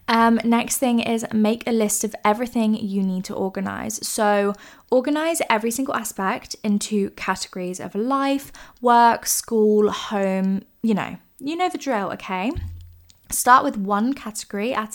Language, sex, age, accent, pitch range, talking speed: English, female, 20-39, British, 200-235 Hz, 150 wpm